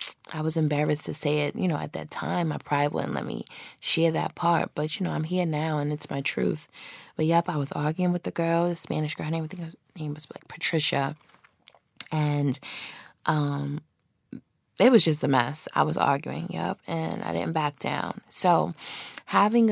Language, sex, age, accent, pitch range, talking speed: English, female, 20-39, American, 145-165 Hz, 205 wpm